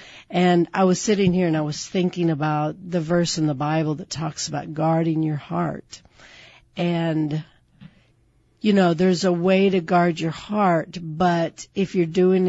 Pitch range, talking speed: 160-190 Hz, 170 wpm